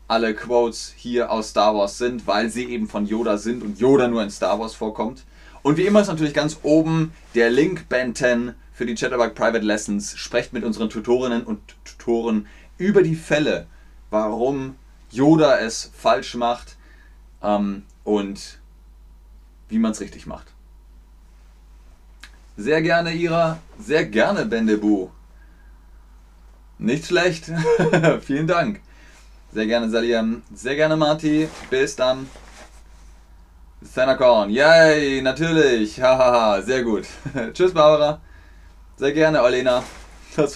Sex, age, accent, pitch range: male, 30-49, German, 100-150 Hz